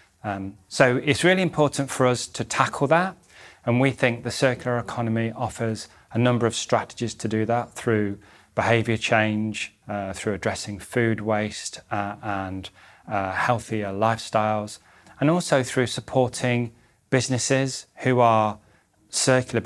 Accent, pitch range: British, 110-125 Hz